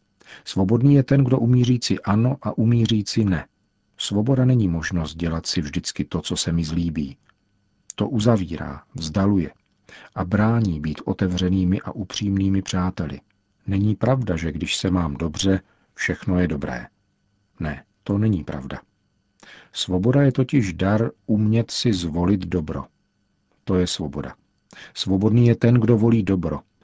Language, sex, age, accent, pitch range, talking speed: Czech, male, 50-69, native, 90-110 Hz, 135 wpm